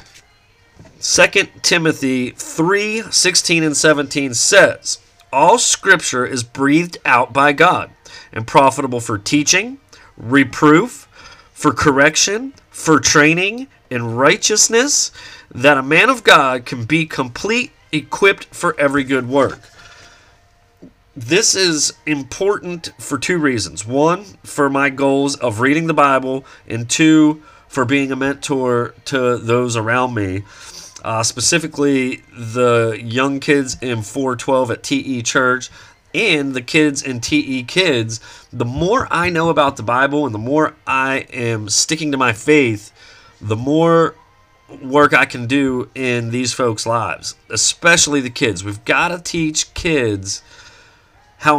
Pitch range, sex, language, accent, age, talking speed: 120-155 Hz, male, English, American, 30-49, 130 wpm